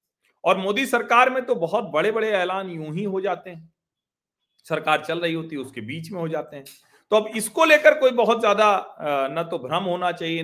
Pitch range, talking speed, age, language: 145-230 Hz, 215 wpm, 40-59, Hindi